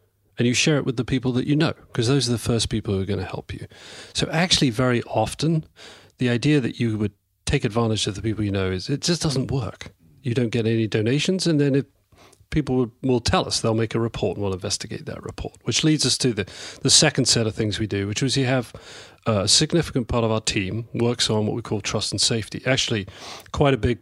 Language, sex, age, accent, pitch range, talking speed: English, male, 40-59, British, 105-130 Hz, 245 wpm